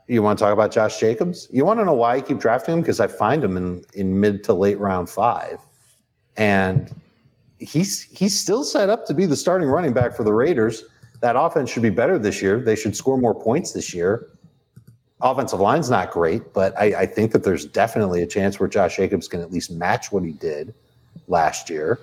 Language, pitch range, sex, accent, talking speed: English, 95-130 Hz, male, American, 220 wpm